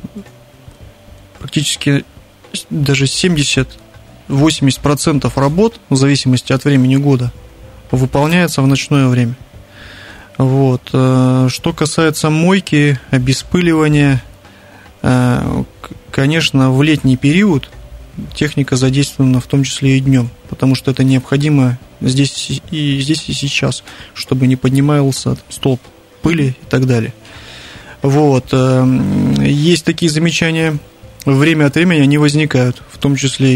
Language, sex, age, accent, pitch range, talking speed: Russian, male, 20-39, native, 125-145 Hz, 100 wpm